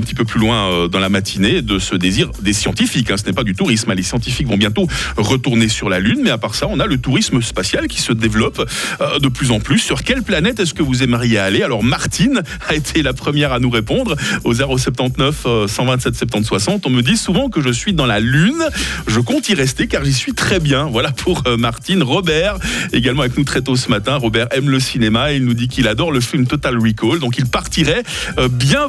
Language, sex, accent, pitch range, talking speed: French, male, French, 115-155 Hz, 225 wpm